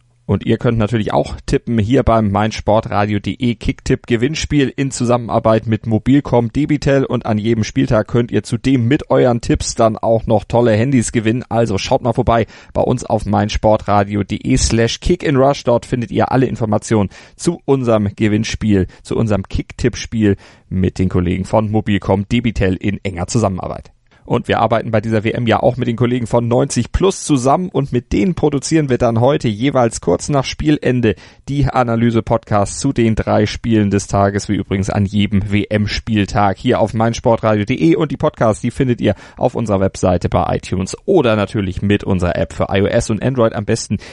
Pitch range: 100-120 Hz